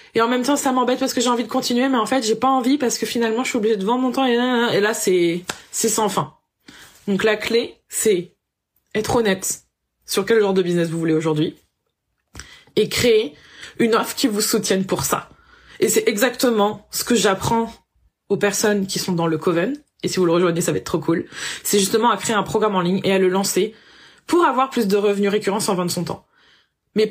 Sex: female